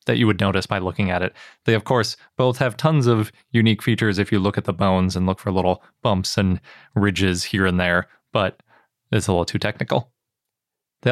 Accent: American